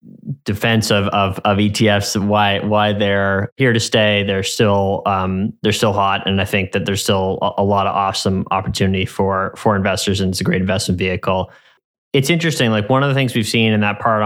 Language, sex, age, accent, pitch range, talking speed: English, male, 20-39, American, 100-115 Hz, 215 wpm